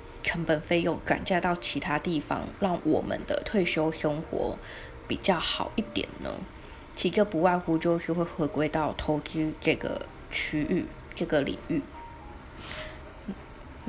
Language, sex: Chinese, female